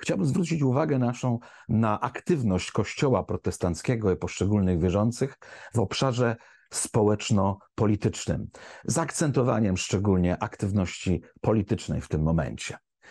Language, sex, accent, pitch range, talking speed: Polish, male, native, 95-125 Hz, 100 wpm